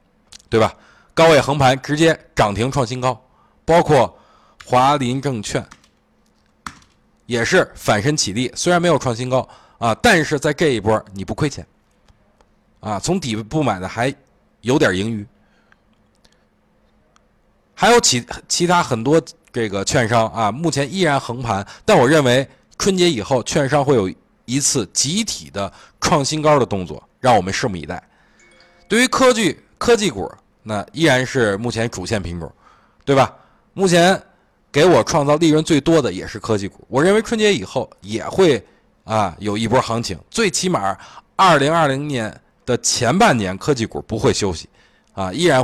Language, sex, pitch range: Chinese, male, 110-155 Hz